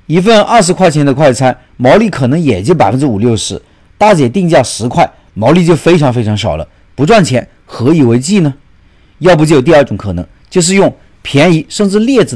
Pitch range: 115-185 Hz